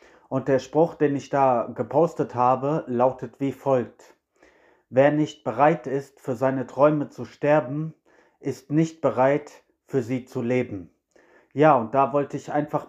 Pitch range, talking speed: 130-155 Hz, 155 wpm